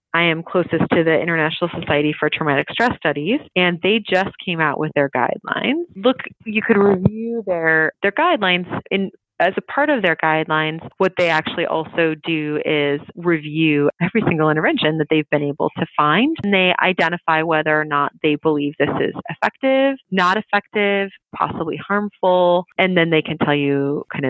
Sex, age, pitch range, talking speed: female, 30-49, 155-190 Hz, 175 wpm